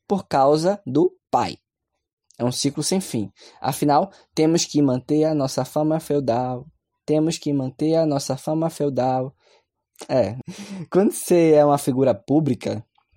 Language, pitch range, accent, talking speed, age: Portuguese, 130-175 Hz, Brazilian, 140 wpm, 10-29